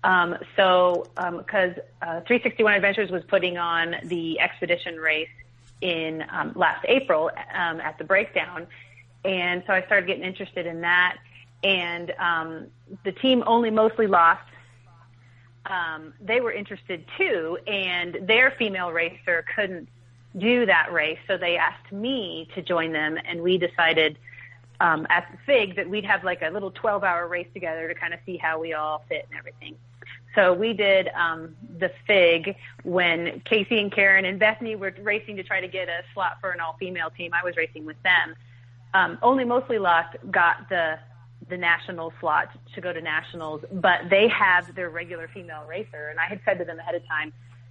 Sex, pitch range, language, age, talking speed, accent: female, 155-195 Hz, English, 30-49, 180 wpm, American